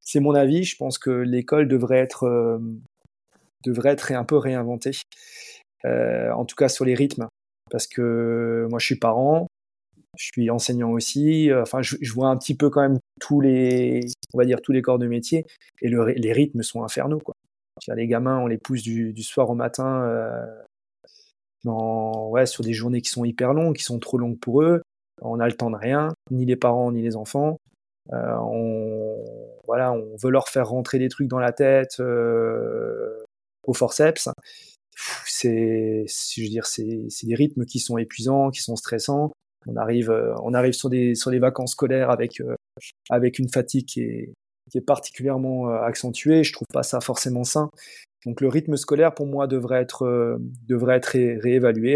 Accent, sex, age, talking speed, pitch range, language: French, male, 20-39, 190 wpm, 115-140 Hz, French